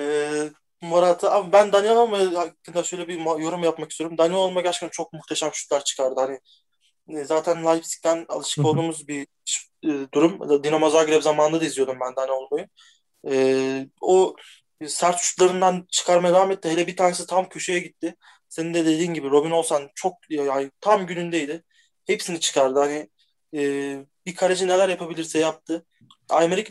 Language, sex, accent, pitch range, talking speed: Turkish, male, native, 150-185 Hz, 135 wpm